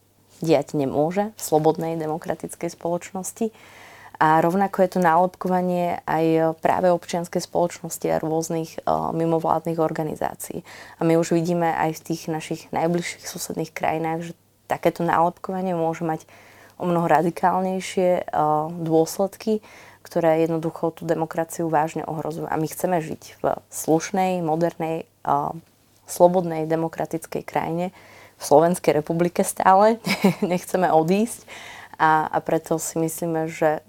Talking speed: 125 wpm